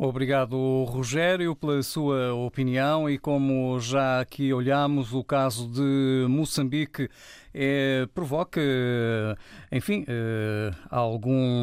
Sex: male